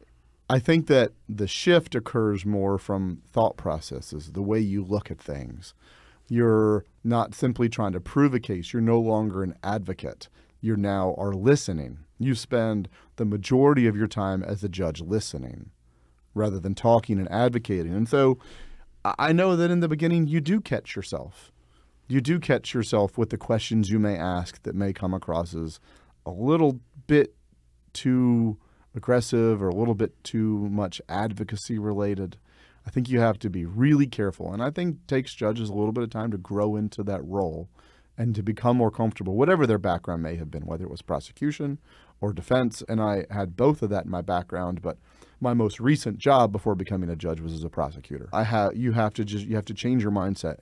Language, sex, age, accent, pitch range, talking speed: English, male, 40-59, American, 95-120 Hz, 195 wpm